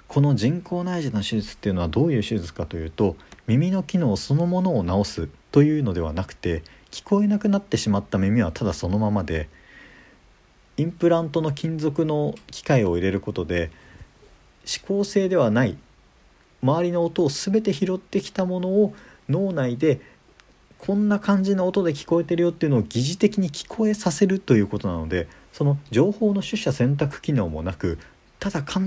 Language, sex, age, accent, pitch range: Japanese, male, 40-59, native, 100-160 Hz